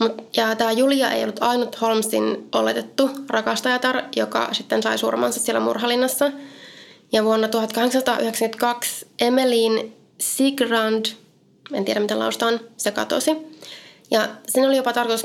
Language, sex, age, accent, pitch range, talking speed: Finnish, female, 20-39, native, 215-260 Hz, 125 wpm